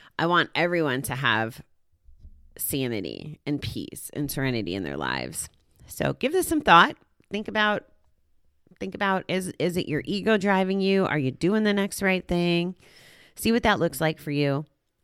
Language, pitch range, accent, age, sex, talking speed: English, 130-195 Hz, American, 30-49, female, 170 wpm